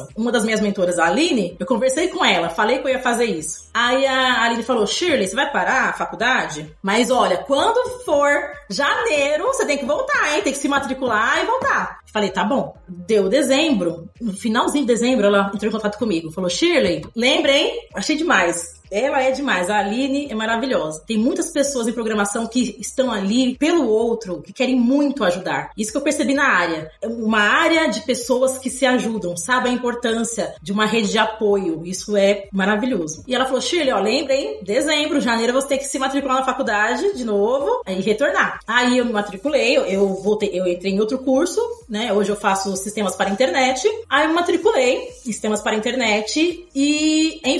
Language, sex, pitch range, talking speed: Portuguese, female, 210-280 Hz, 195 wpm